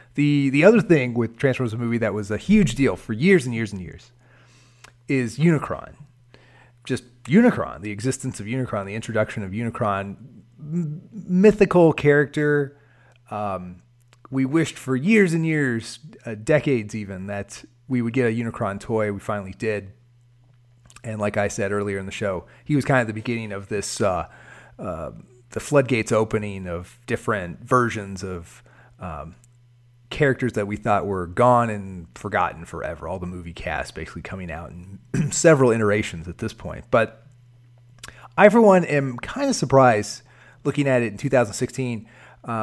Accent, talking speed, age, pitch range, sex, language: American, 160 wpm, 30-49, 110-135 Hz, male, English